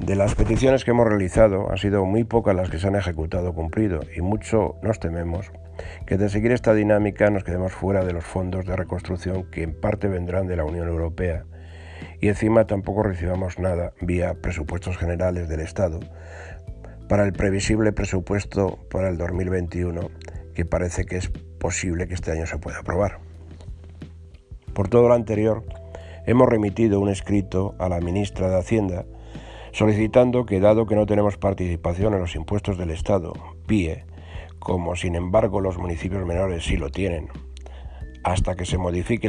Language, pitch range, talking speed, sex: Spanish, 85-100 Hz, 165 wpm, male